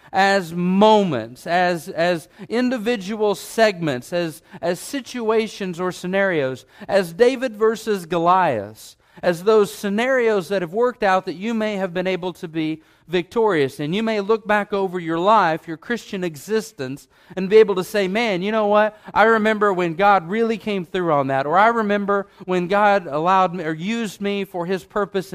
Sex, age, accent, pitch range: male, 50-69, American, 175-220 Hz